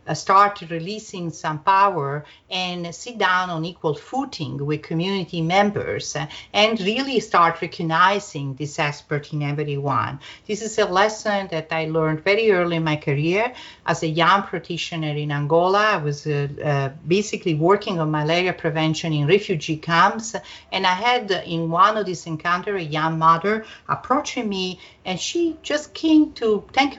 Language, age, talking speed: English, 50-69, 155 wpm